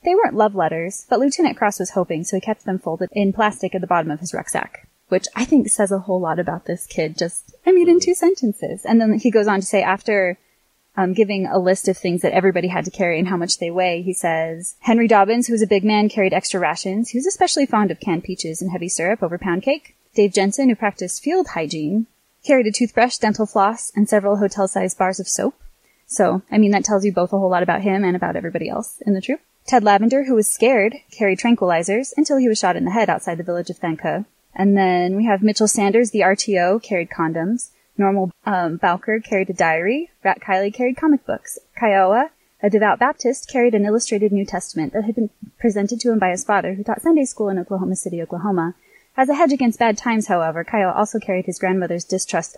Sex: female